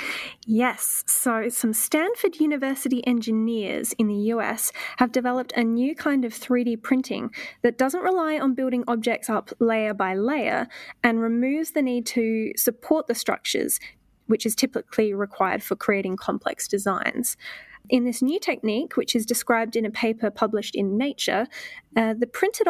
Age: 10-29